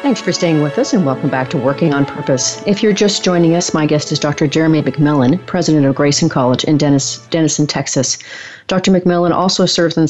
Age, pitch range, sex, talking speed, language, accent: 40-59, 140-170 Hz, female, 210 wpm, English, American